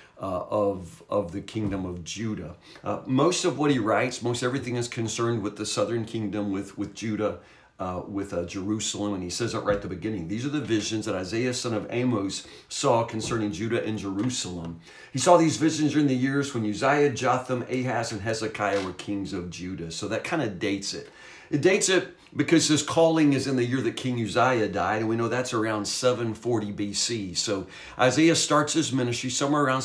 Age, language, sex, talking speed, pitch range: 50-69, English, male, 205 wpm, 105-135 Hz